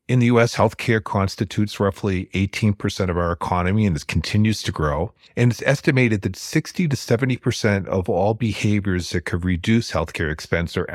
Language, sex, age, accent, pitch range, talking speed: English, male, 40-59, American, 90-120 Hz, 180 wpm